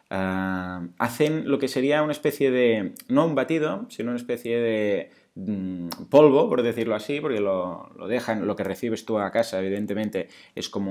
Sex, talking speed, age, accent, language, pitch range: male, 180 wpm, 30-49, Spanish, Spanish, 105-145 Hz